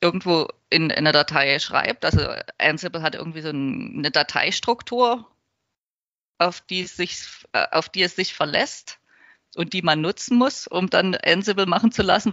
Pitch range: 165-200 Hz